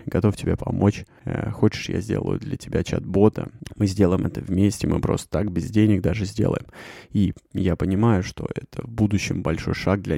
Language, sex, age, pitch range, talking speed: Russian, male, 20-39, 95-105 Hz, 185 wpm